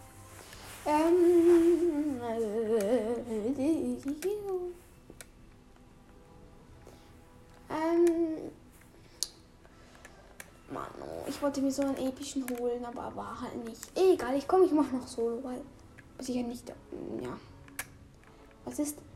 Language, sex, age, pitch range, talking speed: German, female, 10-29, 235-310 Hz, 90 wpm